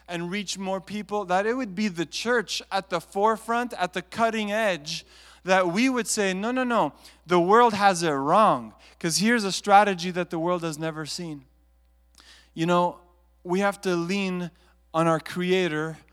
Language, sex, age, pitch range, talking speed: English, male, 20-39, 165-210 Hz, 180 wpm